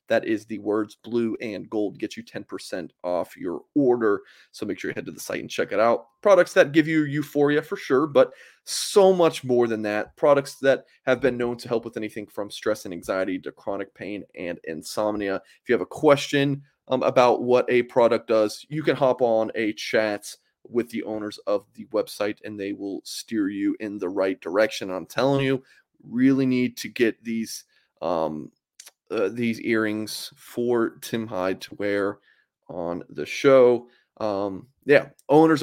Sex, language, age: male, English, 30-49